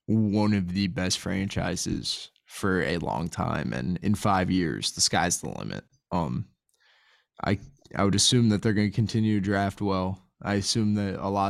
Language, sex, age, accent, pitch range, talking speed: English, male, 20-39, American, 95-105 Hz, 185 wpm